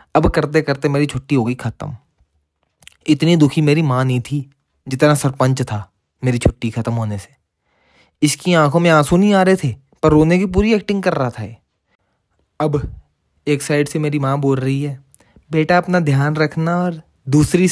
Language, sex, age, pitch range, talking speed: Hindi, male, 20-39, 130-180 Hz, 185 wpm